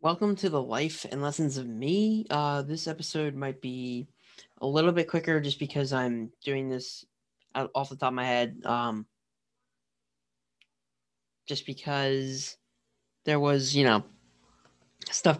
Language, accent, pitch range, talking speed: English, American, 130-150 Hz, 140 wpm